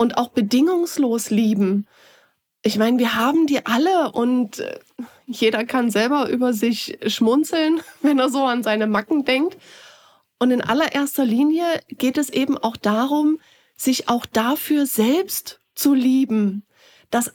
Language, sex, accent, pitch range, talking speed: German, female, German, 255-315 Hz, 140 wpm